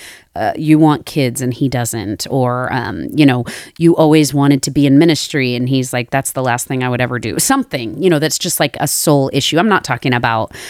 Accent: American